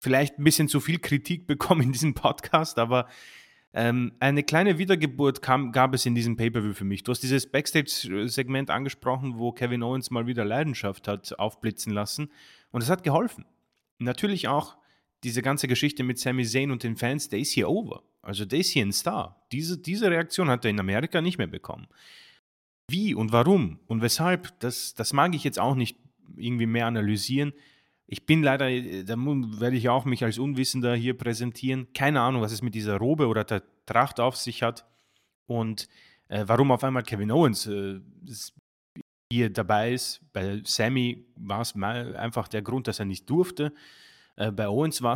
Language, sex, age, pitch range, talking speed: German, male, 30-49, 110-140 Hz, 180 wpm